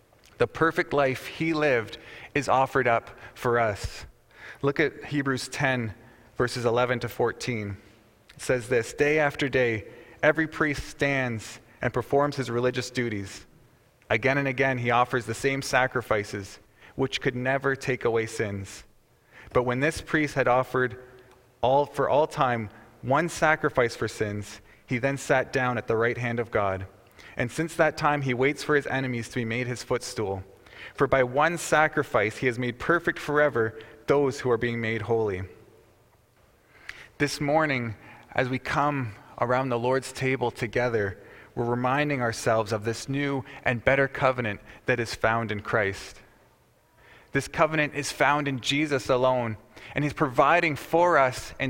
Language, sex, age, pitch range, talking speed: English, male, 30-49, 115-145 Hz, 160 wpm